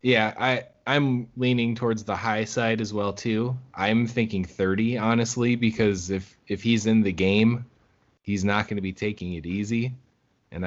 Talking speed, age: 180 wpm, 20-39